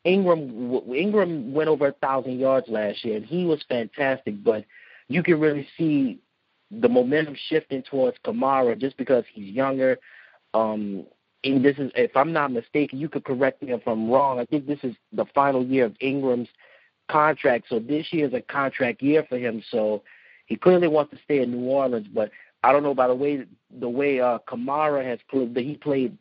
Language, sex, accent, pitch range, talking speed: English, male, American, 125-150 Hz, 195 wpm